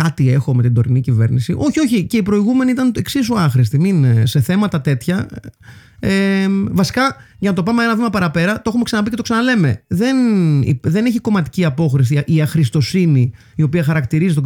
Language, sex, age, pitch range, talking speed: Greek, male, 30-49, 130-210 Hz, 185 wpm